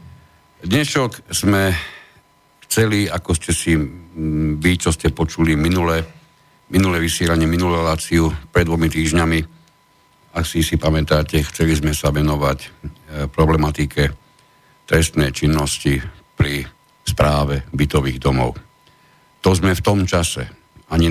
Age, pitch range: 60-79, 75-85 Hz